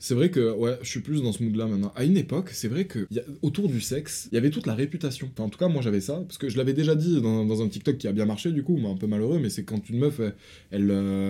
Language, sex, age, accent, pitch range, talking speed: French, male, 20-39, French, 105-145 Hz, 325 wpm